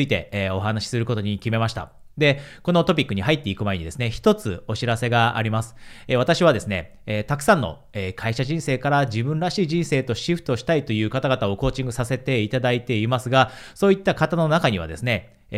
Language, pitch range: Japanese, 110-155 Hz